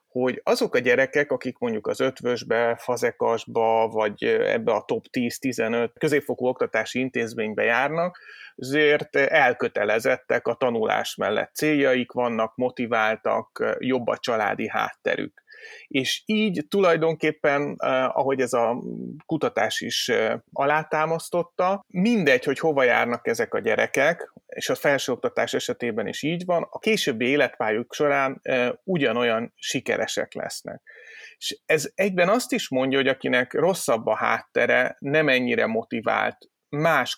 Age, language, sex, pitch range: 30-49, Hungarian, male, 125-185 Hz